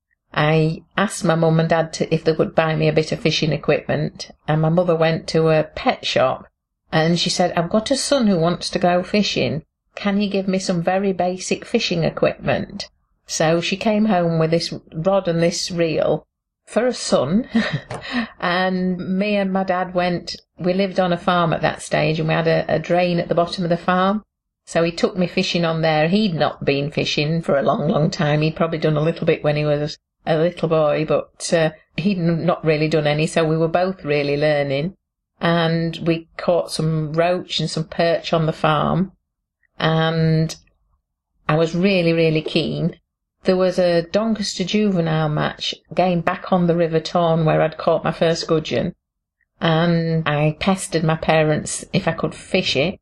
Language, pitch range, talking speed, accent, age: English, 160-185 Hz, 190 wpm, British, 50-69